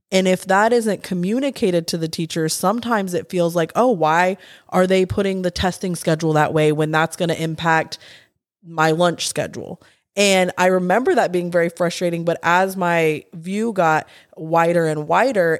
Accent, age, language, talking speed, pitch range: American, 20-39, English, 175 wpm, 165-195 Hz